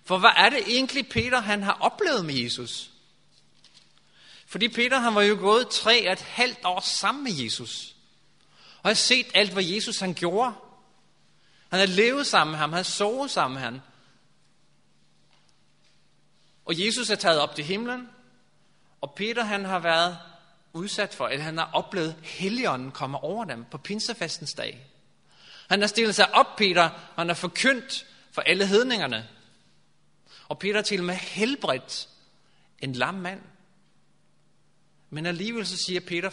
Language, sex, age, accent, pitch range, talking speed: Danish, male, 30-49, native, 150-215 Hz, 160 wpm